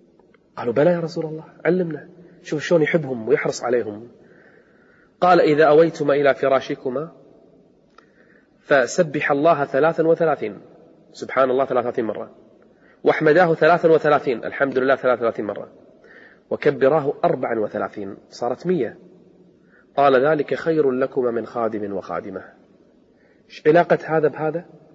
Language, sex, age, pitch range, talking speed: Arabic, male, 30-49, 145-185 Hz, 115 wpm